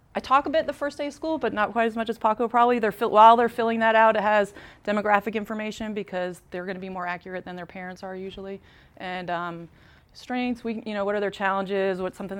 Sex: female